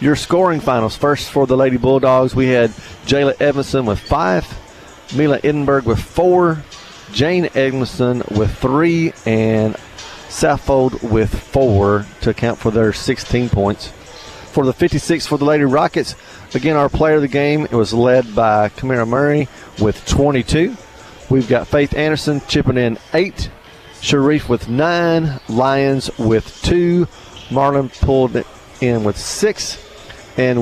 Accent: American